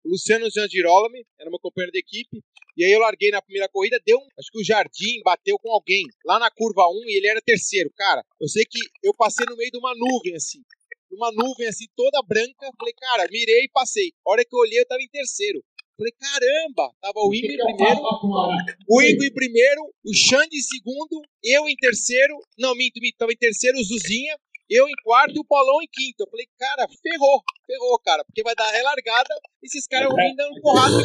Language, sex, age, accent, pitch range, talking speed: Portuguese, male, 30-49, Brazilian, 225-320 Hz, 225 wpm